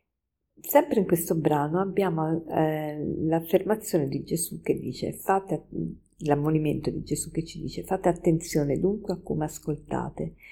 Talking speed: 135 wpm